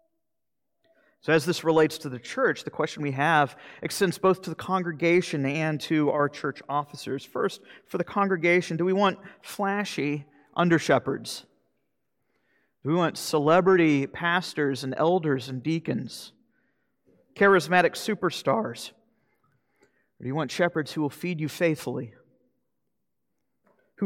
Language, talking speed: English, 130 wpm